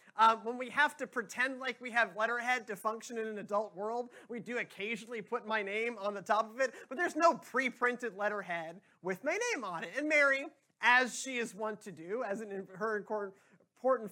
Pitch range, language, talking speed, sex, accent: 195-250 Hz, English, 210 wpm, male, American